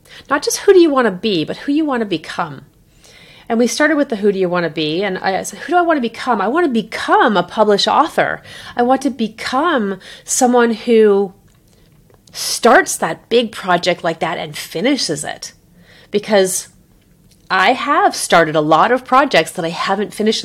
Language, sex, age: English, female, 30-49